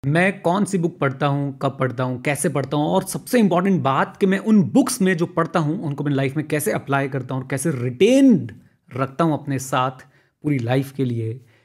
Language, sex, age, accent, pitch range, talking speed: Hindi, male, 30-49, native, 135-190 Hz, 215 wpm